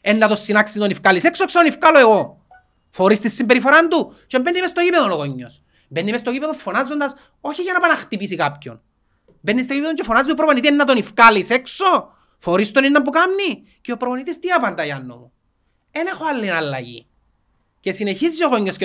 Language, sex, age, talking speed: Greek, male, 30-49, 135 wpm